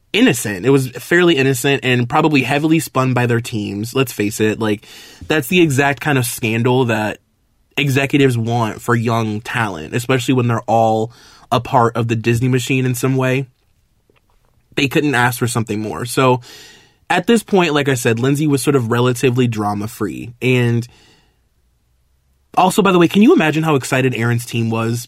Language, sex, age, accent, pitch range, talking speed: English, male, 20-39, American, 115-145 Hz, 175 wpm